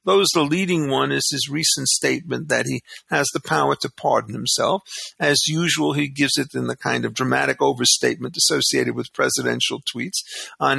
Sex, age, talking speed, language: male, 50-69, 180 wpm, English